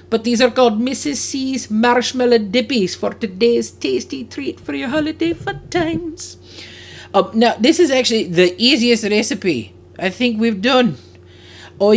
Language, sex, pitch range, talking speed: English, male, 160-250 Hz, 150 wpm